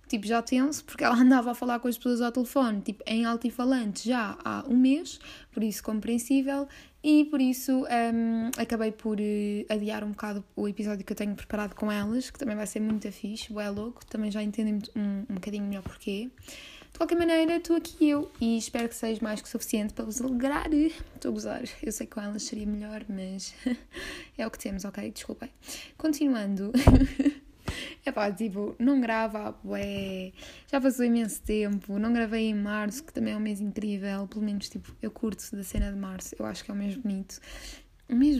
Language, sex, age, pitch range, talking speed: Portuguese, female, 20-39, 205-255 Hz, 205 wpm